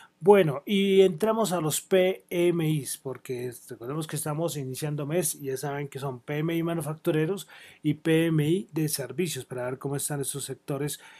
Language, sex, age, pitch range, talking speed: Spanish, male, 30-49, 140-175 Hz, 155 wpm